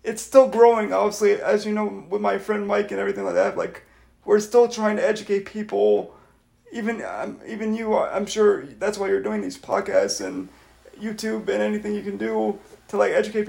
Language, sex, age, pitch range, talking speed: English, male, 30-49, 195-215 Hz, 195 wpm